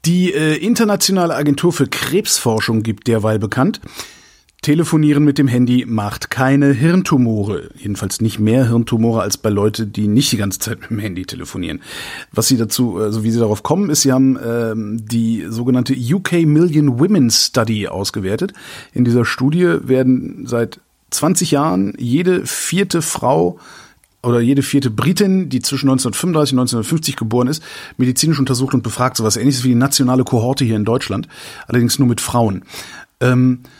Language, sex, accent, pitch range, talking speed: German, male, German, 115-145 Hz, 160 wpm